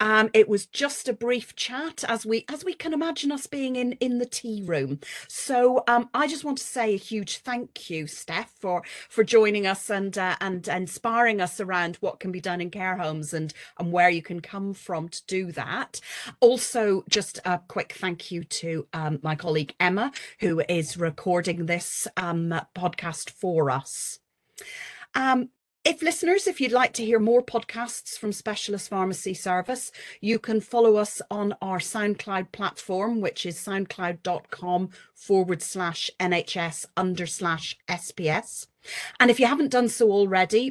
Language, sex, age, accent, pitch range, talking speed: English, female, 40-59, British, 175-240 Hz, 170 wpm